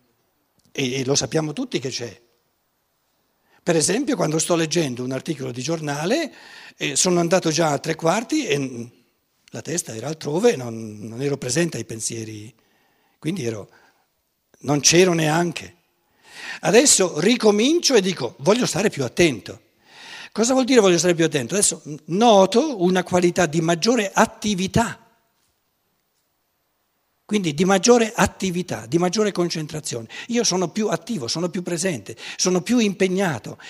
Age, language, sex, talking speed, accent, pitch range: 60-79, Italian, male, 135 wpm, native, 150-215 Hz